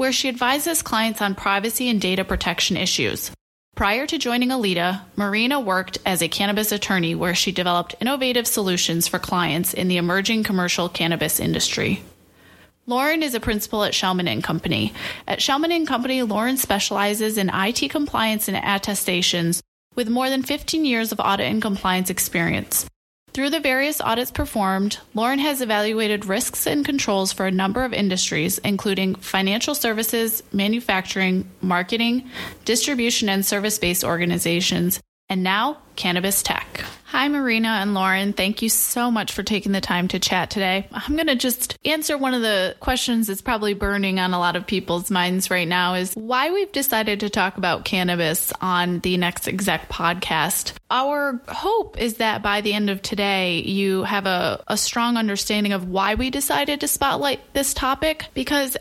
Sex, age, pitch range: female, 20-39, 190-250 Hz